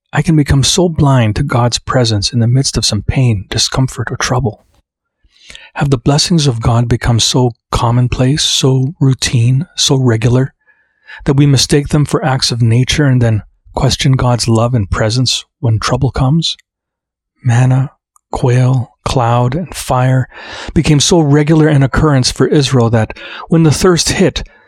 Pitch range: 115-145 Hz